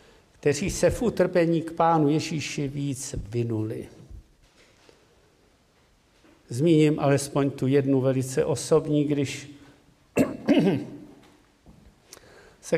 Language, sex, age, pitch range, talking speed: Czech, male, 50-69, 135-160 Hz, 80 wpm